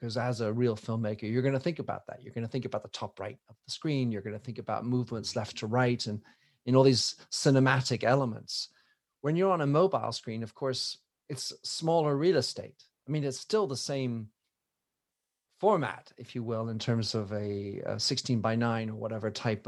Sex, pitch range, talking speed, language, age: male, 115-135 Hz, 215 wpm, English, 40-59